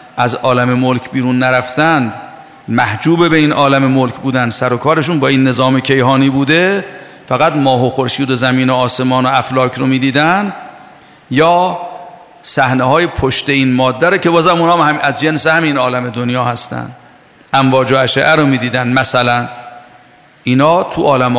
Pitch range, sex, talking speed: 130-155 Hz, male, 155 wpm